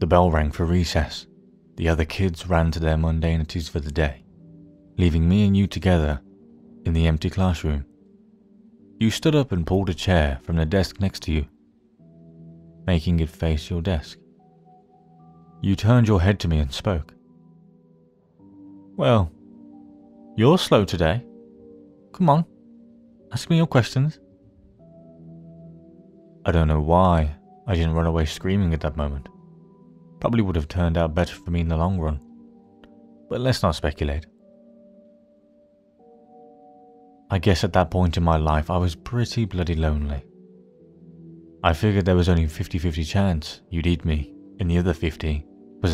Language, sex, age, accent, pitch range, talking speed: English, male, 30-49, British, 80-110 Hz, 150 wpm